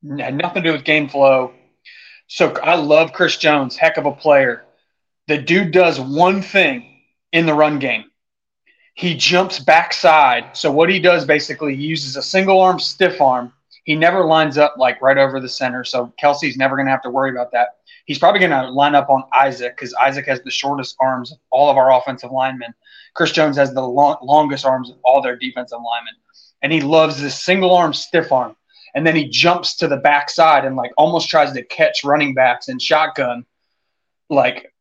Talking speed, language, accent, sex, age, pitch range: 200 wpm, English, American, male, 30-49, 135-170 Hz